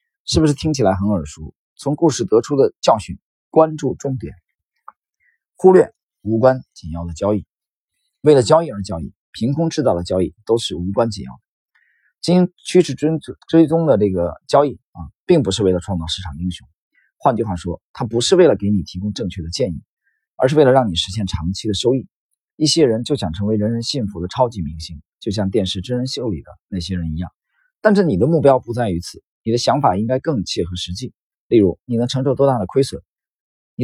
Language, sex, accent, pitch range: Chinese, male, native, 95-140 Hz